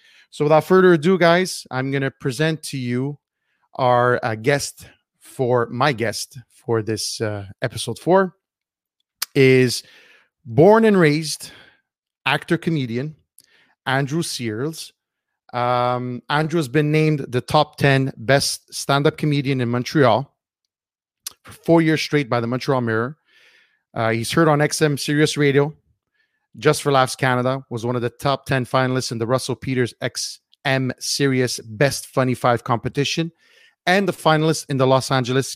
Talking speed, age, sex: 145 wpm, 30-49, male